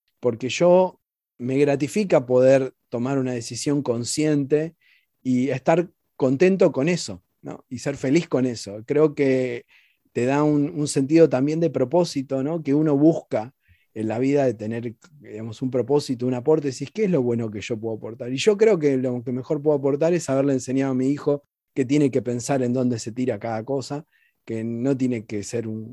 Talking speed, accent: 195 wpm, Argentinian